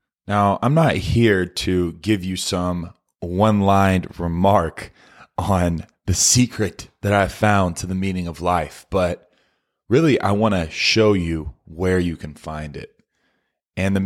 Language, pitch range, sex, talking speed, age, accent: English, 85-105 Hz, male, 155 wpm, 20-39, American